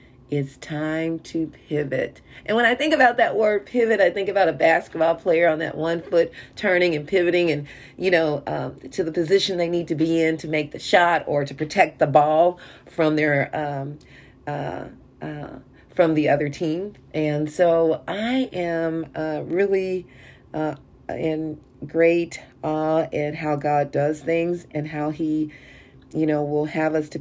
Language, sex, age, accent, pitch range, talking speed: English, female, 40-59, American, 145-165 Hz, 175 wpm